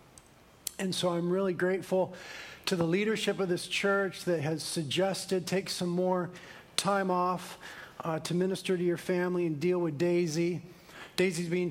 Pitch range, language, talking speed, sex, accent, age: 155-180 Hz, English, 160 wpm, male, American, 40-59